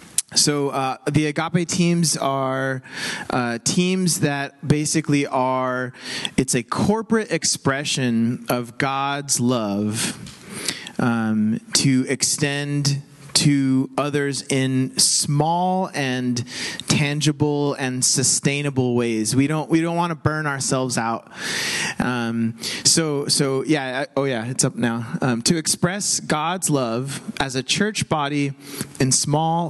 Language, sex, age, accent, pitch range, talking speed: English, male, 30-49, American, 125-155 Hz, 120 wpm